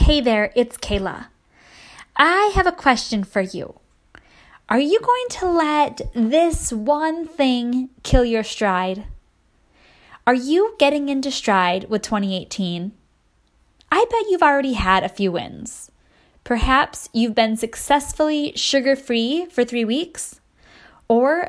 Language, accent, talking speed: English, American, 125 wpm